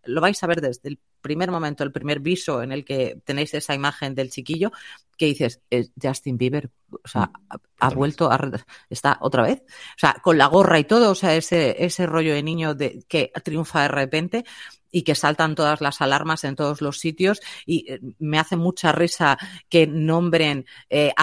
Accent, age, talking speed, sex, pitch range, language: Spanish, 30-49, 200 wpm, female, 145-195 Hz, Spanish